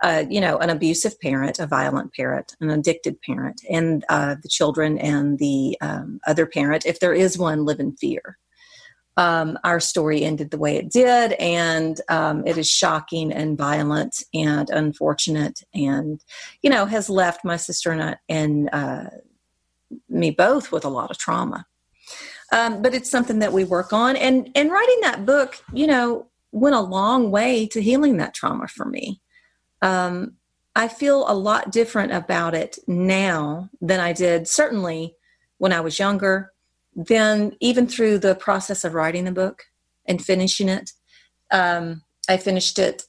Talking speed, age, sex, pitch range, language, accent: 165 wpm, 40-59, female, 160-215 Hz, English, American